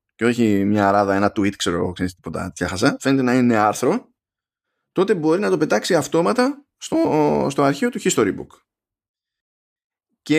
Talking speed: 150 wpm